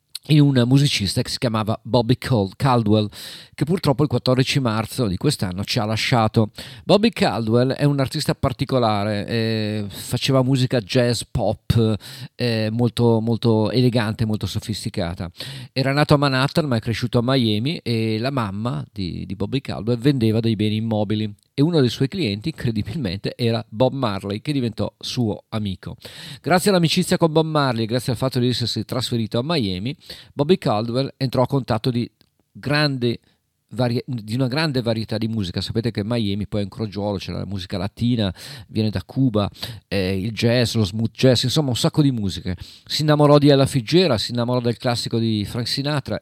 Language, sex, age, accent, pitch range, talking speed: Italian, male, 40-59, native, 105-135 Hz, 170 wpm